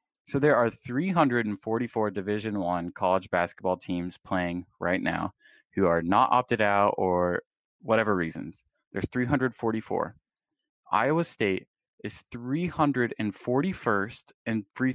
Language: English